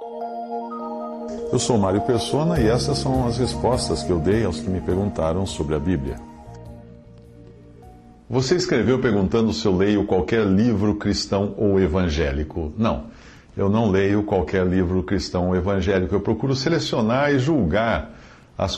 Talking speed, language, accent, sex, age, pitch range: 145 wpm, English, Brazilian, male, 60-79, 90-120 Hz